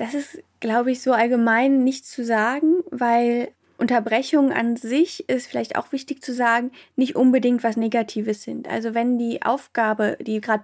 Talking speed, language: 170 wpm, German